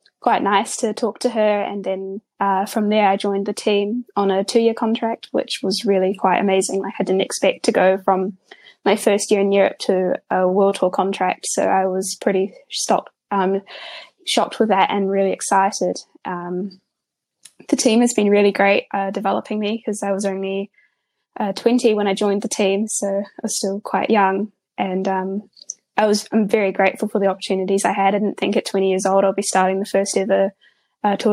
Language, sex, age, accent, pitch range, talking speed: English, female, 10-29, Australian, 195-220 Hz, 205 wpm